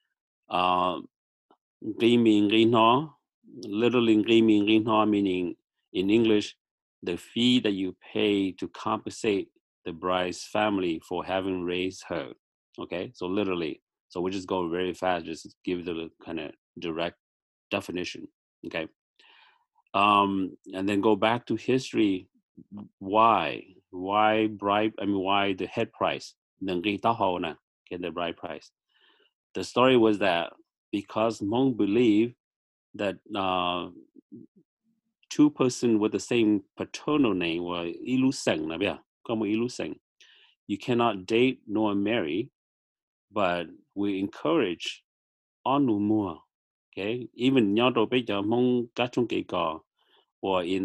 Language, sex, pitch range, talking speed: English, male, 95-125 Hz, 105 wpm